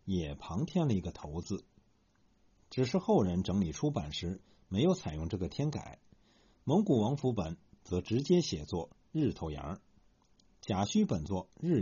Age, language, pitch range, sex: 50-69, Chinese, 90-150 Hz, male